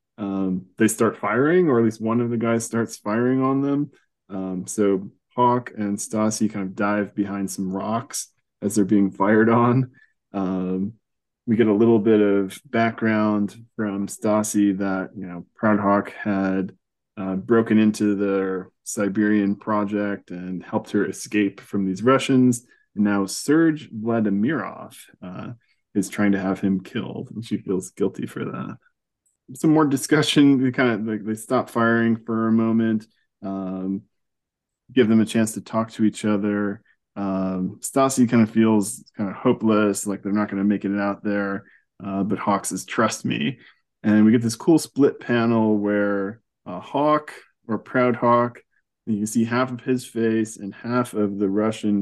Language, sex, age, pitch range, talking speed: English, male, 20-39, 100-115 Hz, 170 wpm